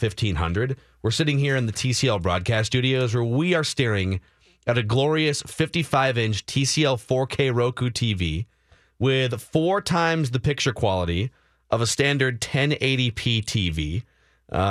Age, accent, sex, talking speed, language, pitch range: 30-49, American, male, 135 wpm, English, 110-145 Hz